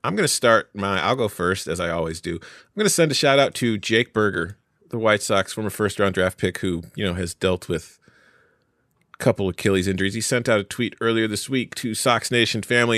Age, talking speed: 30-49, 235 wpm